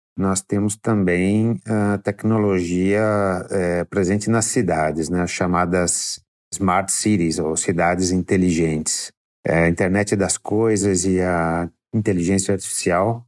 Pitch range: 90-105 Hz